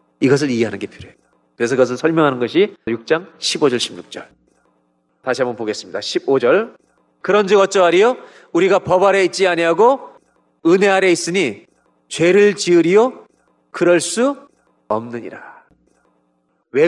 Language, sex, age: Korean, male, 40-59